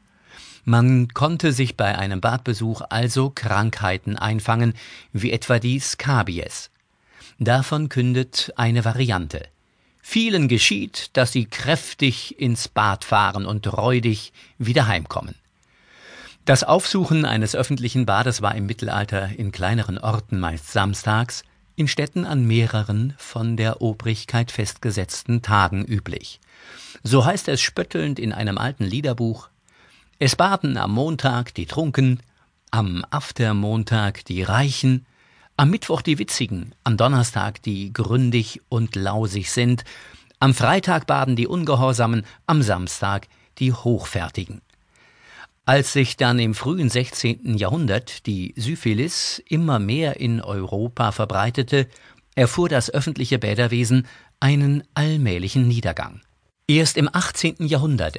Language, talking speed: German, 120 wpm